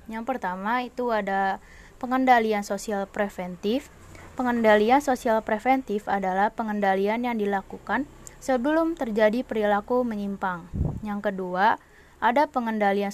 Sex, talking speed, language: female, 100 wpm, Indonesian